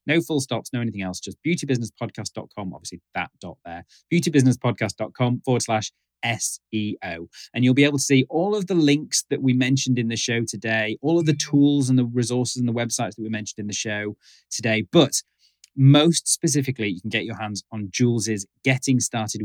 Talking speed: 190 wpm